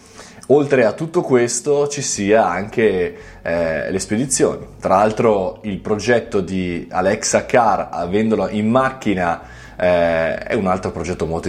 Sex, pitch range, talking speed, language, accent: male, 95-130 Hz, 135 wpm, Italian, native